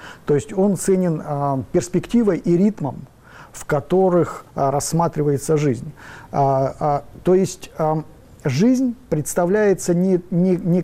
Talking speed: 125 wpm